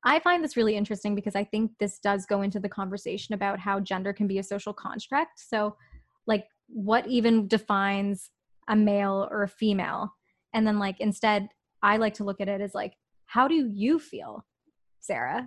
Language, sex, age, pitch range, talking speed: English, female, 20-39, 195-235 Hz, 190 wpm